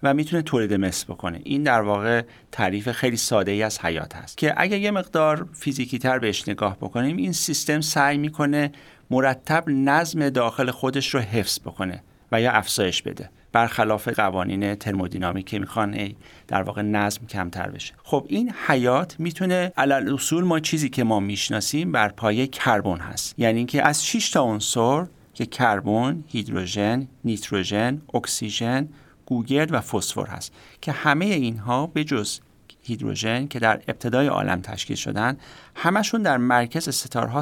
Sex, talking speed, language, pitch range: male, 150 wpm, Persian, 105-145 Hz